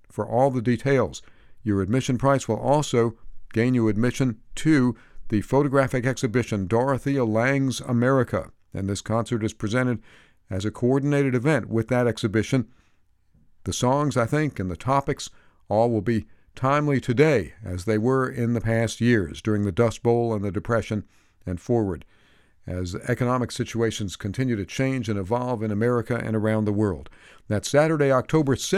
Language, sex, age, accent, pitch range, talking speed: English, male, 50-69, American, 110-130 Hz, 160 wpm